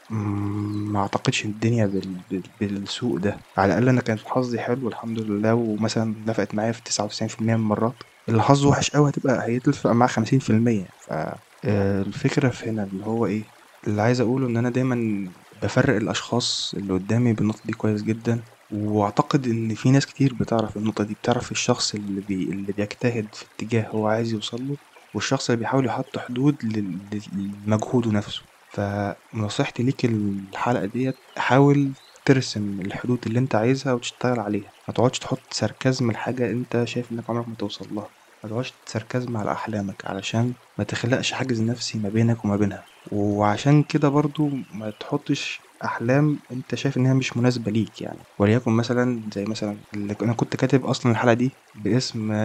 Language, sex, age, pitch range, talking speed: Arabic, male, 20-39, 105-125 Hz, 160 wpm